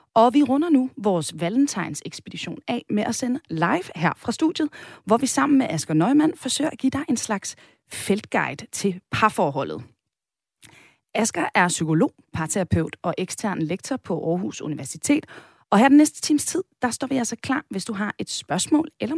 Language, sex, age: Danish, female, 30-49